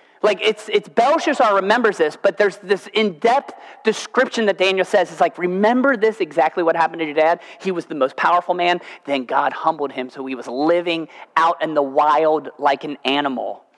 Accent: American